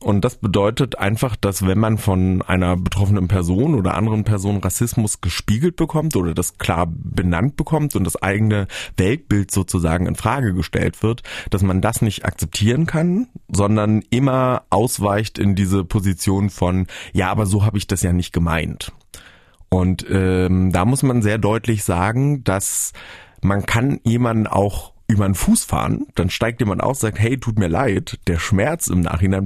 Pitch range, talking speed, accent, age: 90-110 Hz, 170 wpm, German, 30-49